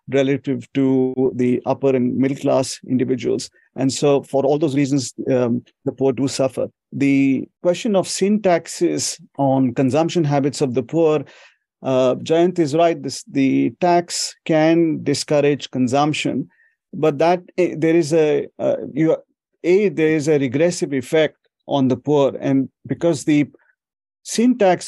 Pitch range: 130-155 Hz